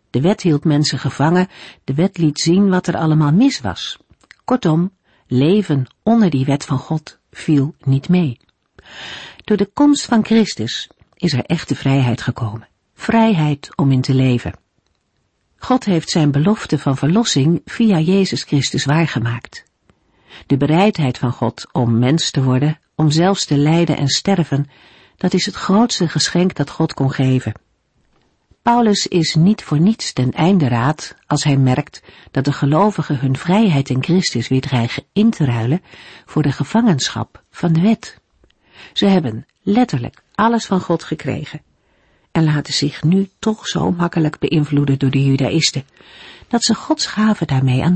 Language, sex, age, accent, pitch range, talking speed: Dutch, female, 50-69, Dutch, 135-185 Hz, 155 wpm